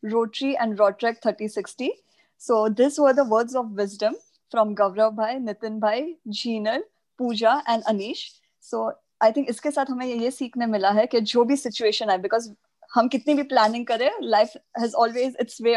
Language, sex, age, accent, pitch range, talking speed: Hindi, female, 20-39, native, 215-255 Hz, 165 wpm